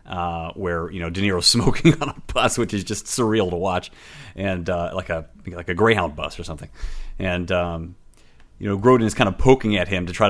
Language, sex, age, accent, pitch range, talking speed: English, male, 30-49, American, 85-110 Hz, 225 wpm